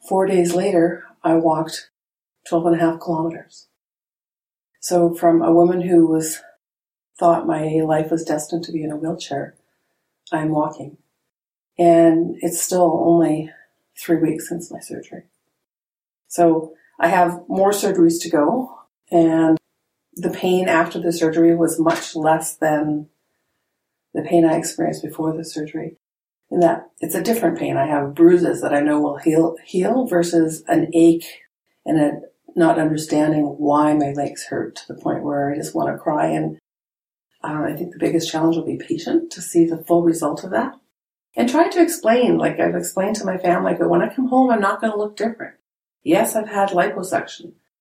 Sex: female